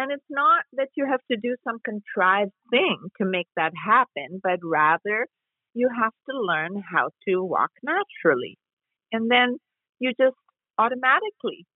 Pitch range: 190-275 Hz